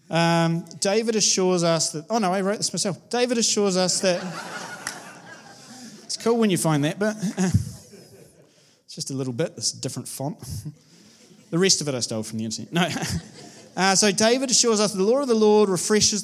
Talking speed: 190 wpm